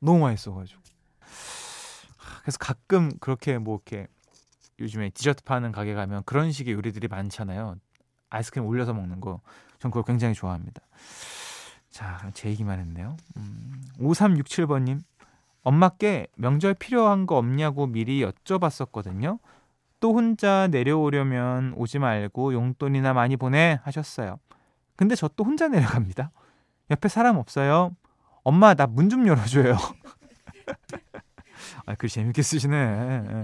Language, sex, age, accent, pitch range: Korean, male, 20-39, native, 115-160 Hz